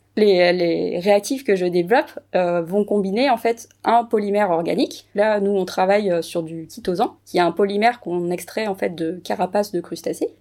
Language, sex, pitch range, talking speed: French, female, 180-225 Hz, 190 wpm